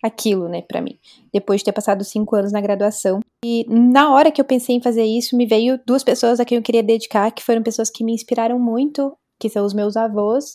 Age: 20-39